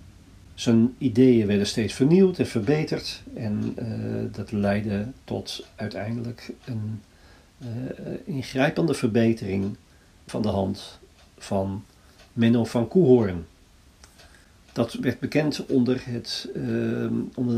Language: Dutch